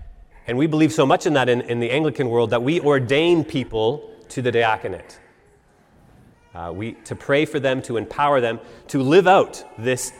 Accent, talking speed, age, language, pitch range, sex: American, 180 wpm, 30-49, English, 115-155 Hz, male